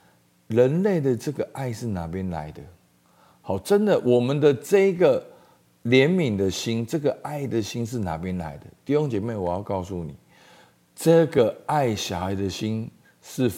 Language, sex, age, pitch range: Chinese, male, 50-69, 95-145 Hz